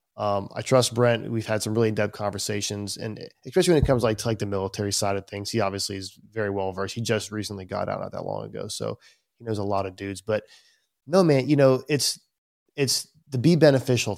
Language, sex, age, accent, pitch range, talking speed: English, male, 20-39, American, 105-130 Hz, 235 wpm